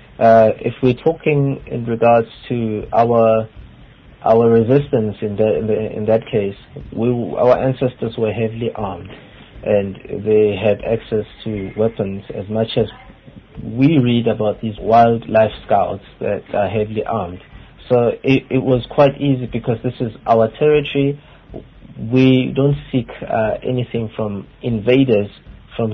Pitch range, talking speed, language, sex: 110-125 Hz, 140 wpm, English, male